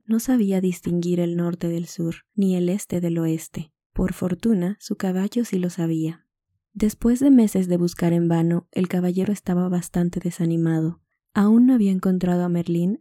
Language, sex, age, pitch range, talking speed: Spanish, female, 20-39, 175-200 Hz, 170 wpm